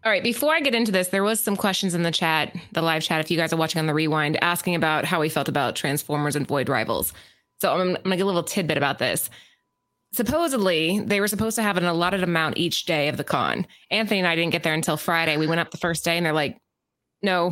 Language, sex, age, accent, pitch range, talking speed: English, female, 20-39, American, 165-220 Hz, 265 wpm